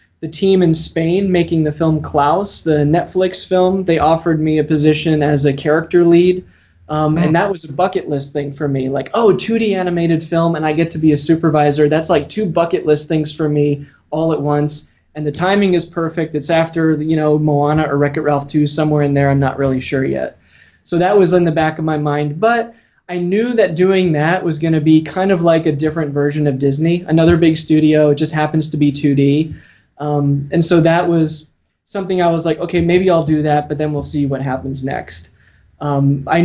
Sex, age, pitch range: male, 20-39, 145-165 Hz